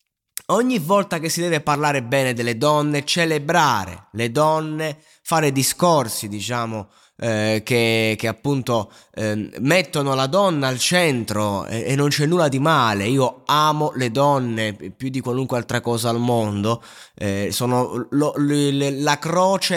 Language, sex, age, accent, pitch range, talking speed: Italian, male, 20-39, native, 120-165 Hz, 145 wpm